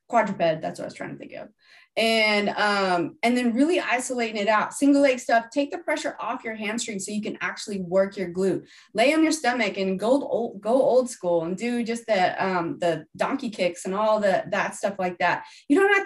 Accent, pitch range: American, 200-250 Hz